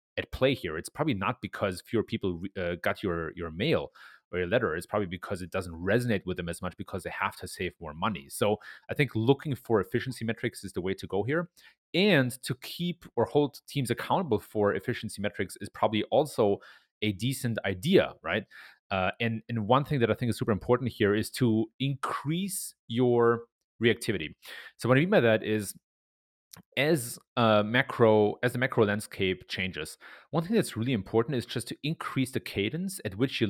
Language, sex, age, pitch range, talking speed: English, male, 30-49, 100-130 Hz, 195 wpm